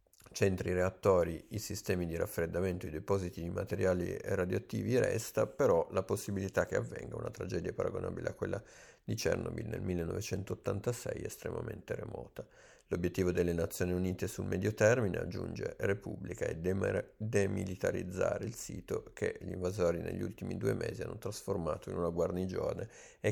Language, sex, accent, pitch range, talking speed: Italian, male, native, 90-105 Hz, 140 wpm